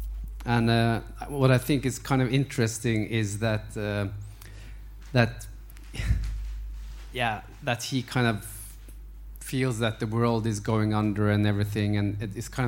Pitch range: 100-125 Hz